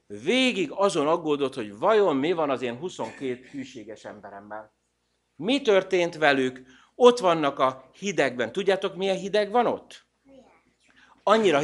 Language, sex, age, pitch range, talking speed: Hungarian, male, 60-79, 140-215 Hz, 130 wpm